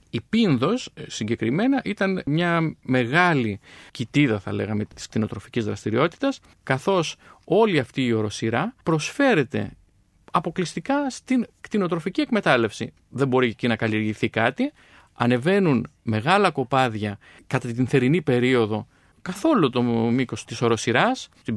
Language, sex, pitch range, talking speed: Greek, male, 120-190 Hz, 115 wpm